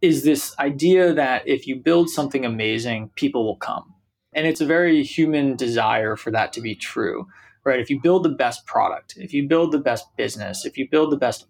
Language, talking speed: English, 215 wpm